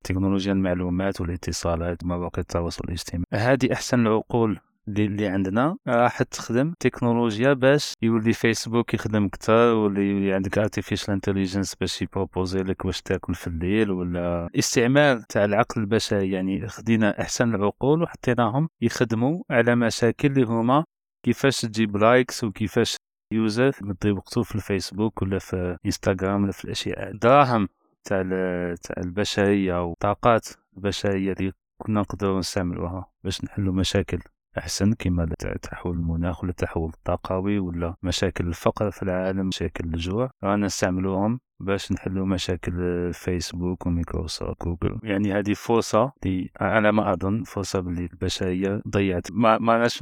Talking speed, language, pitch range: 130 wpm, Arabic, 90-115 Hz